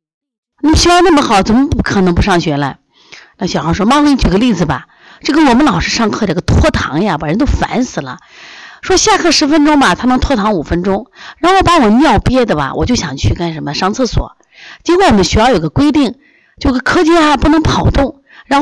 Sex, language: female, Chinese